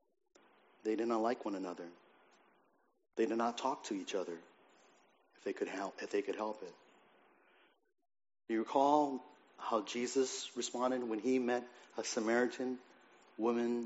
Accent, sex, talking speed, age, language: American, male, 145 wpm, 40-59, English